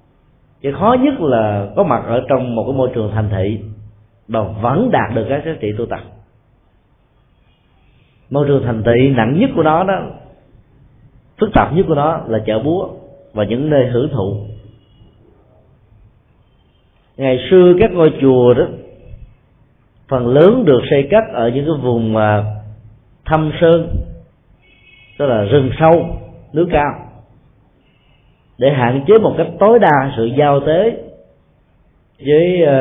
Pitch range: 110-150 Hz